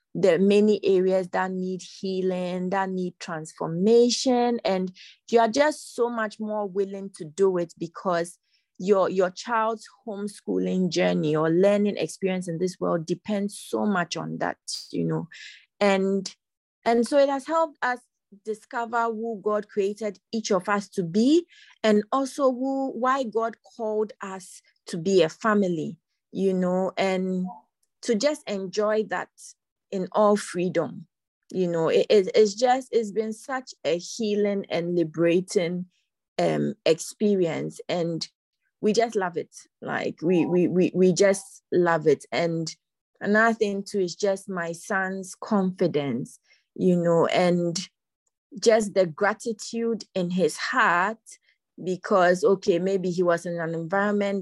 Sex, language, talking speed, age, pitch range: female, English, 140 wpm, 30-49, 180-220 Hz